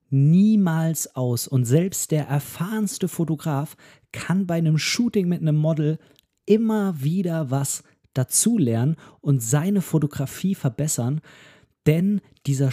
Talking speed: 115 wpm